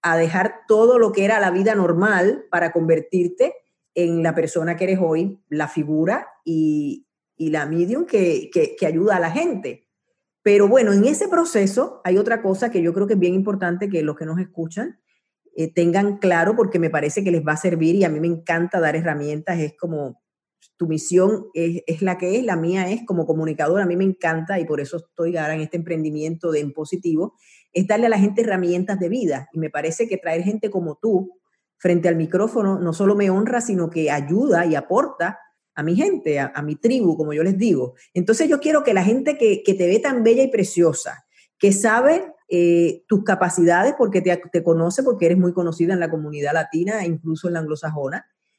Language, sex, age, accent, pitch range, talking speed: Spanish, female, 40-59, American, 165-215 Hz, 210 wpm